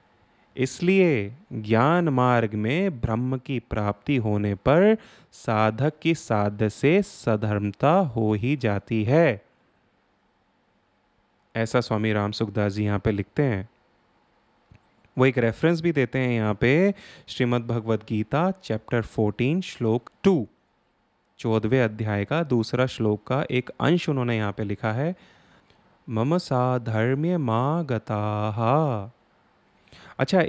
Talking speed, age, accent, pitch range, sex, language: 115 wpm, 30-49, native, 110-165 Hz, male, Hindi